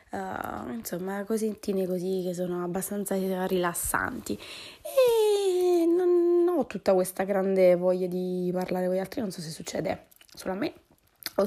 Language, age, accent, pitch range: Italian, 20-39, native, 185-220 Hz